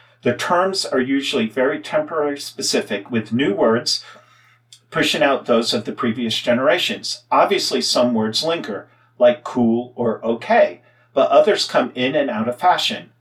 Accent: American